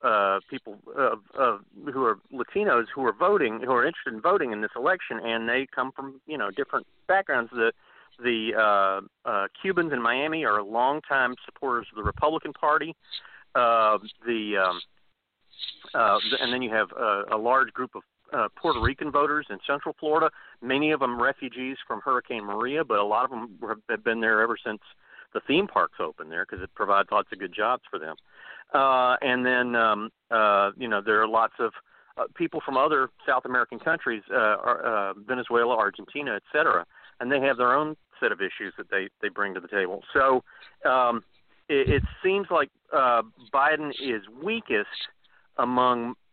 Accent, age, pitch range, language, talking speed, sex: American, 40-59, 115-150 Hz, English, 185 wpm, male